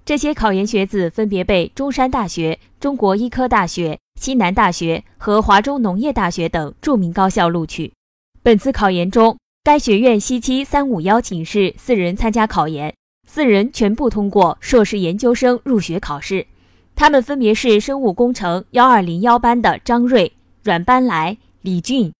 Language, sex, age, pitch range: Chinese, female, 20-39, 180-245 Hz